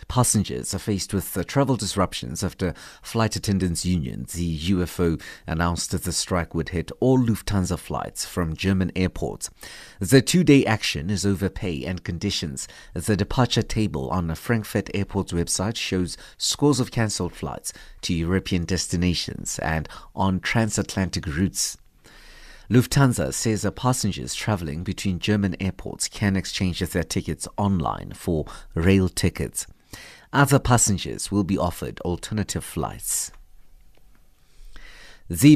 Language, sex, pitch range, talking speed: English, male, 90-115 Hz, 130 wpm